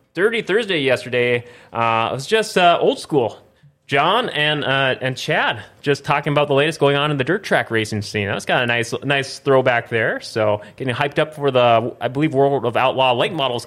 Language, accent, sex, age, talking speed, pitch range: English, American, male, 30-49, 215 wpm, 110-145 Hz